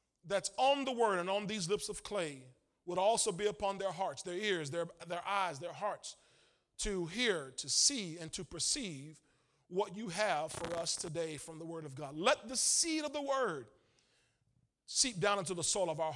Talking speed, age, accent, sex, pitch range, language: 200 wpm, 40-59, American, male, 165-215 Hz, English